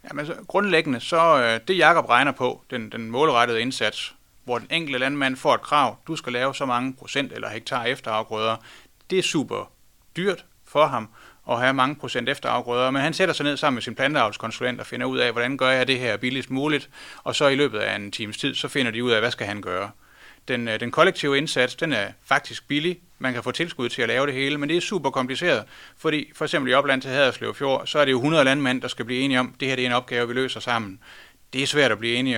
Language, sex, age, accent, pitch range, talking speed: Danish, male, 30-49, native, 120-140 Hz, 240 wpm